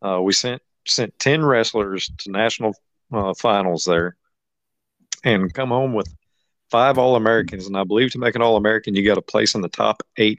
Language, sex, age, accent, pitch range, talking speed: English, male, 50-69, American, 95-125 Hz, 185 wpm